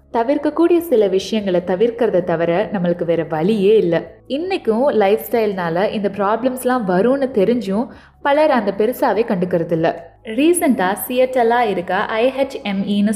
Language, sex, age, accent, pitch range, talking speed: Tamil, female, 20-39, native, 180-240 Hz, 120 wpm